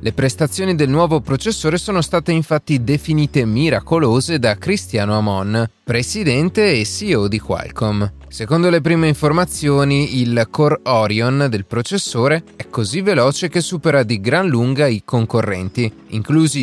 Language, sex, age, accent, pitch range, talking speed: Italian, male, 30-49, native, 110-155 Hz, 135 wpm